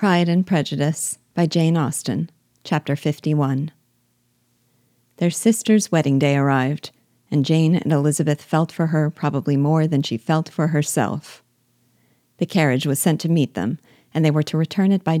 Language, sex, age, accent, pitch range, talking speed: English, female, 40-59, American, 140-170 Hz, 160 wpm